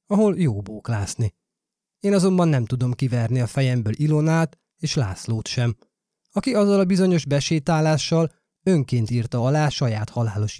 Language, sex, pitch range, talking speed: Hungarian, male, 125-185 Hz, 135 wpm